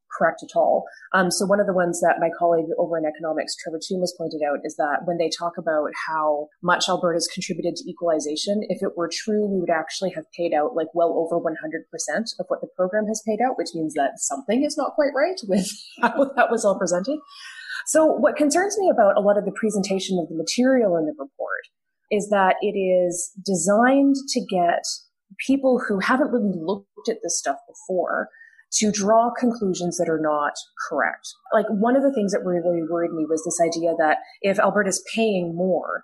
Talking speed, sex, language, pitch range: 205 wpm, female, English, 170-230 Hz